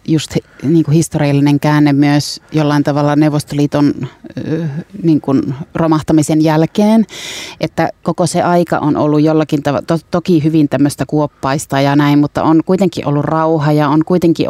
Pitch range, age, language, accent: 150-170 Hz, 30-49, Finnish, native